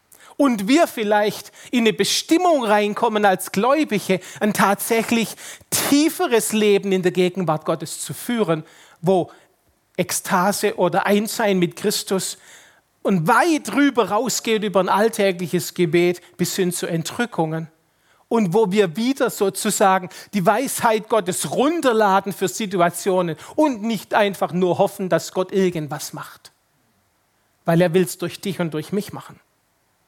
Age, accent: 40-59, German